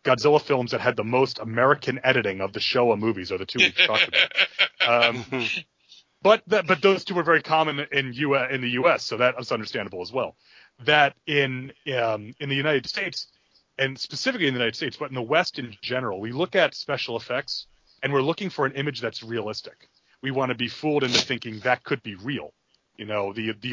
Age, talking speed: 30-49, 210 wpm